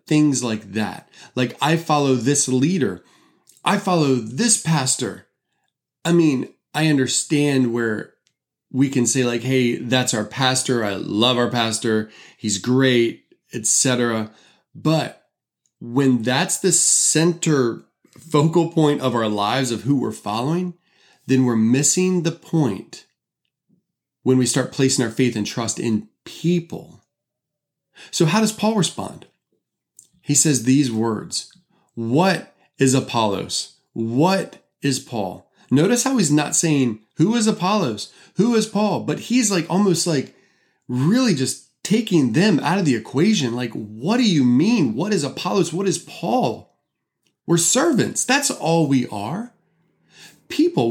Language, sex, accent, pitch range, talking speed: English, male, American, 125-175 Hz, 140 wpm